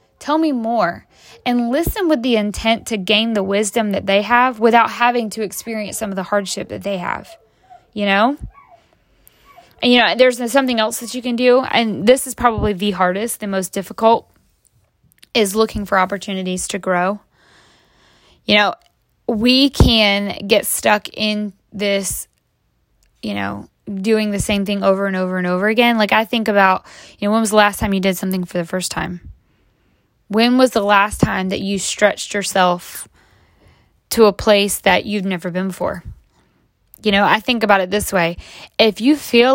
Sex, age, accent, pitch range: female, 10-29, American, 195-235 Hz